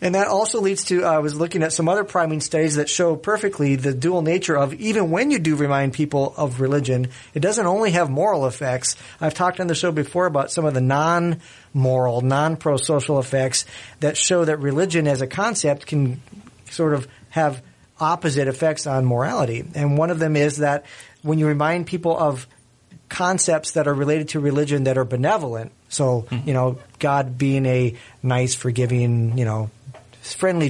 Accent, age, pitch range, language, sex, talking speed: American, 40-59, 130-160 Hz, English, male, 180 wpm